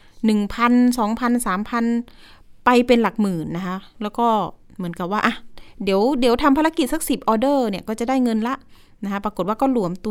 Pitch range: 195-245 Hz